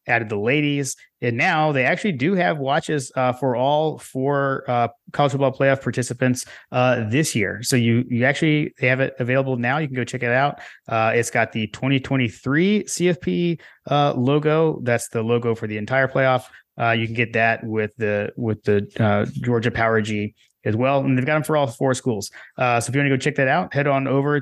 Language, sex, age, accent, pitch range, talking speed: English, male, 30-49, American, 120-140 Hz, 215 wpm